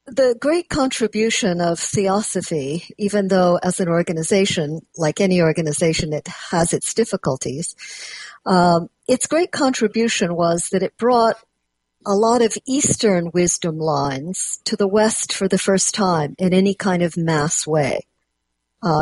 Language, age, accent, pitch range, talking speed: English, 50-69, American, 165-220 Hz, 140 wpm